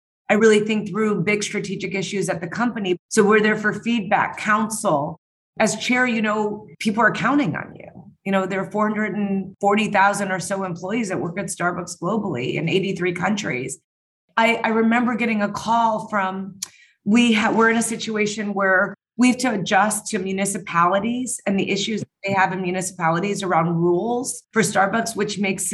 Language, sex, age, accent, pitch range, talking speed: English, female, 30-49, American, 190-220 Hz, 170 wpm